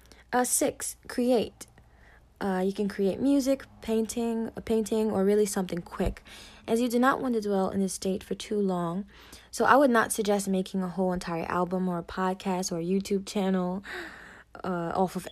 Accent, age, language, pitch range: American, 20-39, English, 185-230 Hz